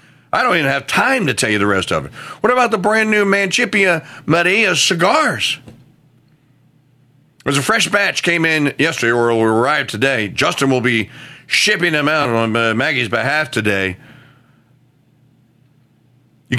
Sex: male